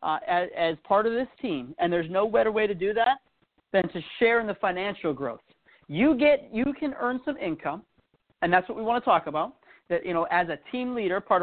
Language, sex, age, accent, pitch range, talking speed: English, male, 40-59, American, 180-245 Hz, 235 wpm